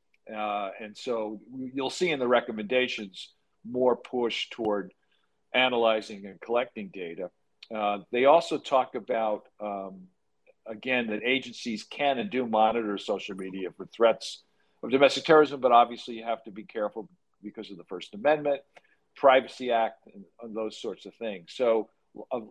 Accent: American